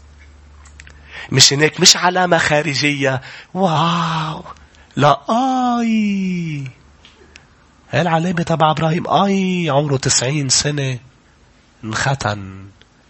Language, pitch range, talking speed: English, 110-150 Hz, 75 wpm